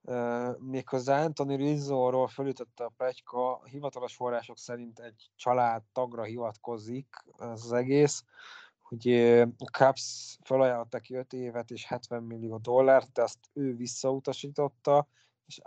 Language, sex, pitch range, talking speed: Hungarian, male, 115-130 Hz, 120 wpm